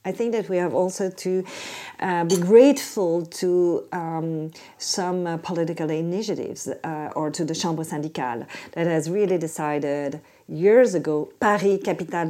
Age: 40-59